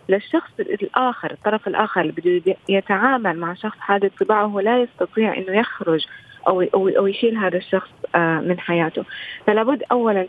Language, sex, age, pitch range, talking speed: Arabic, female, 20-39, 185-220 Hz, 140 wpm